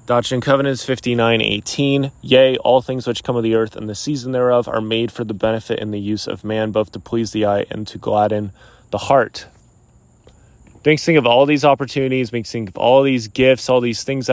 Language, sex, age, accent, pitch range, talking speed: English, male, 20-39, American, 105-120 Hz, 220 wpm